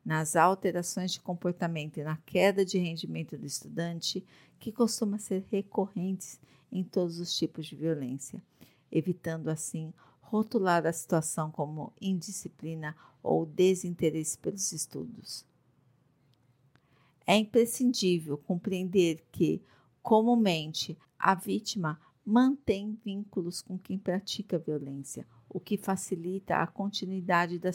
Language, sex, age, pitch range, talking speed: Portuguese, female, 50-69, 160-195 Hz, 110 wpm